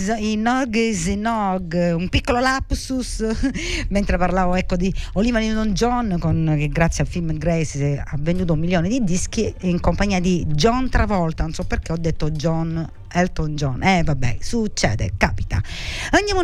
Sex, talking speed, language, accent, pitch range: female, 155 wpm, Italian, native, 165-215 Hz